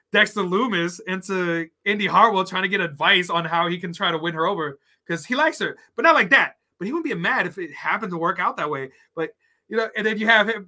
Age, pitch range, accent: 20-39, 165-220 Hz, American